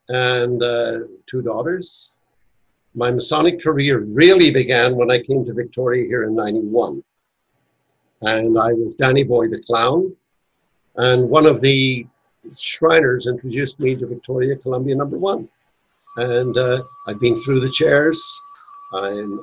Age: 60-79